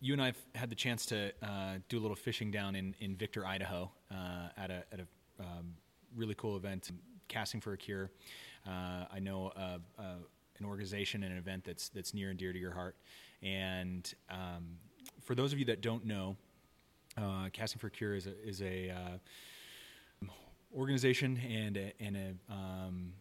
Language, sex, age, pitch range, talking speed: English, male, 30-49, 90-105 Hz, 190 wpm